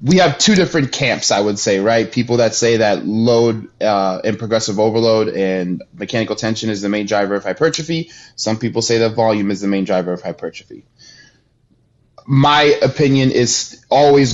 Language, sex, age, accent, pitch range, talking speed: English, male, 20-39, American, 110-135 Hz, 175 wpm